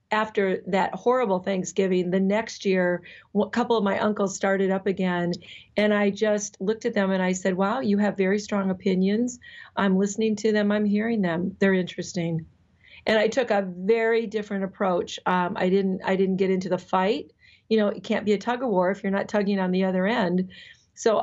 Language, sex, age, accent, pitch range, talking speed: English, female, 40-59, American, 185-210 Hz, 205 wpm